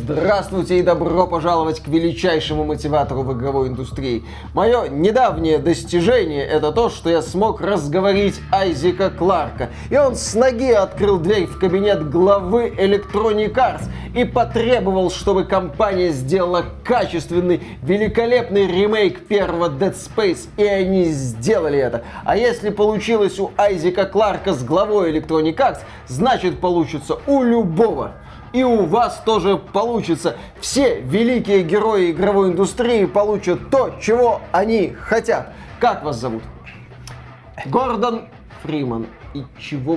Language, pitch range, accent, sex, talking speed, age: Russian, 155-220 Hz, native, male, 125 wpm, 20-39